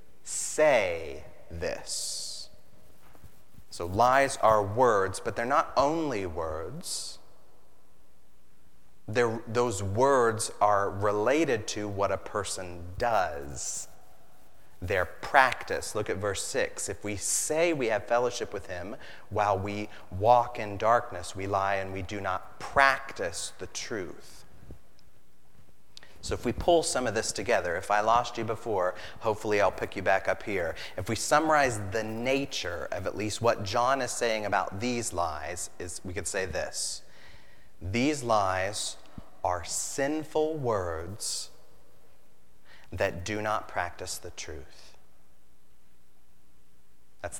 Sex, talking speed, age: male, 130 wpm, 30-49